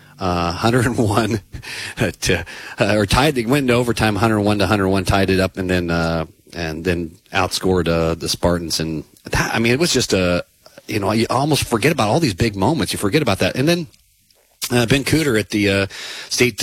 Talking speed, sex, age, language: 200 wpm, male, 40-59, English